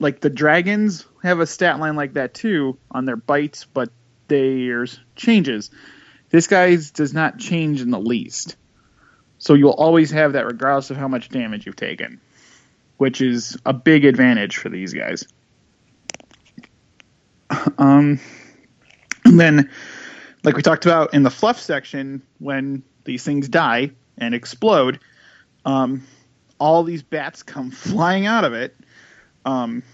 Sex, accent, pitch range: male, American, 130-165 Hz